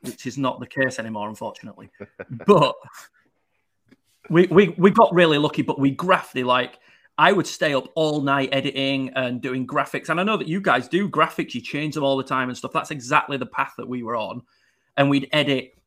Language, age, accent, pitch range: English, 30-49, British, 125-150 Hz